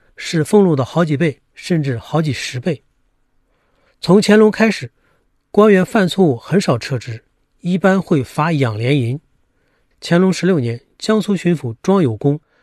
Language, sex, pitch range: Chinese, male, 135-190 Hz